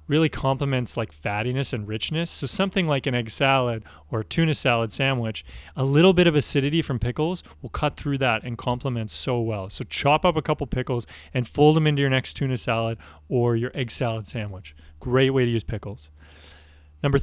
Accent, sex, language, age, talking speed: American, male, English, 30-49, 200 wpm